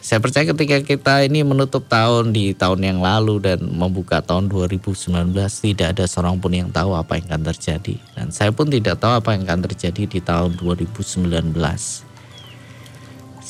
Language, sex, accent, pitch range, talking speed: Indonesian, male, native, 95-130 Hz, 165 wpm